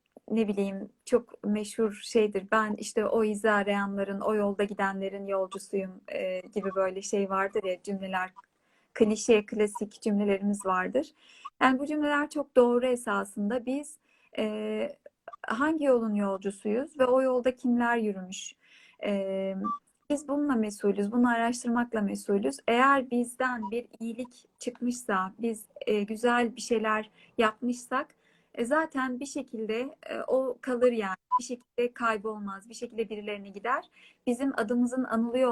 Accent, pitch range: native, 205-250 Hz